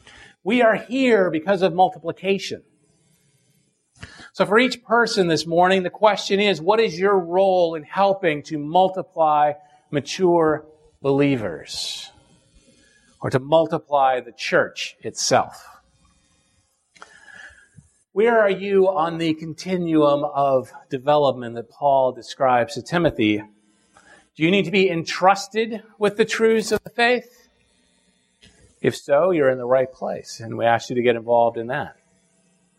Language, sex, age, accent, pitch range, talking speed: English, male, 40-59, American, 130-185 Hz, 130 wpm